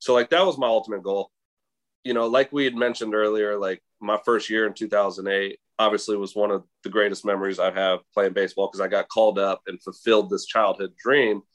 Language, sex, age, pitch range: English, male, 30-49, 105-135 Hz